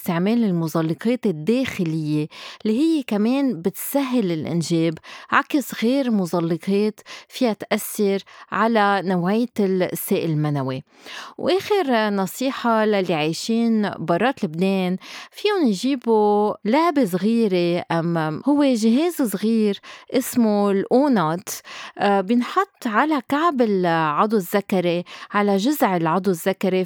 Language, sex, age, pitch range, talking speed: Arabic, female, 30-49, 175-235 Hz, 95 wpm